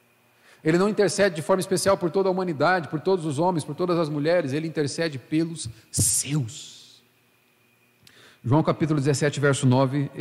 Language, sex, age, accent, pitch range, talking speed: Portuguese, male, 40-59, Brazilian, 130-200 Hz, 160 wpm